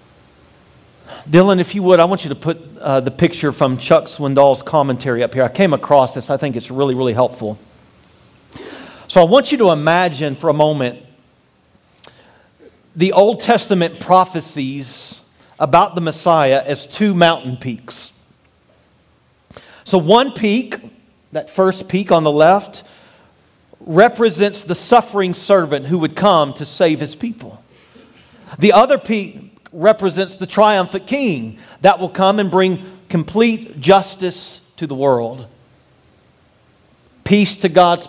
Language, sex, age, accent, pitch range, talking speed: English, male, 40-59, American, 140-195 Hz, 140 wpm